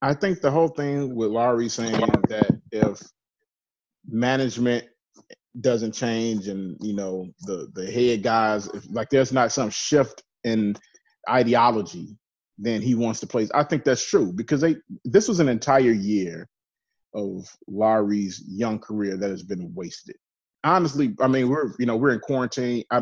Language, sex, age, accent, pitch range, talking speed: English, male, 30-49, American, 100-125 Hz, 160 wpm